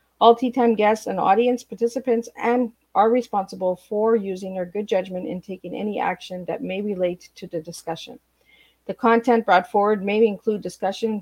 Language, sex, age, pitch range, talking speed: English, female, 50-69, 180-225 Hz, 165 wpm